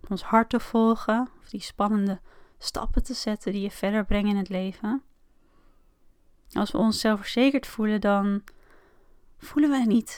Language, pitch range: Dutch, 210-260 Hz